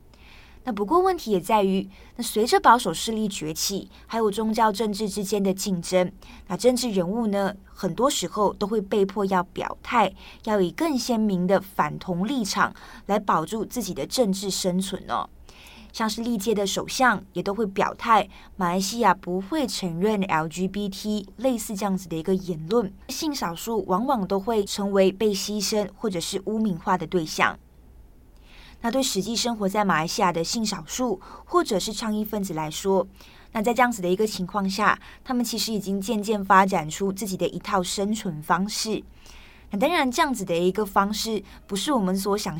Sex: female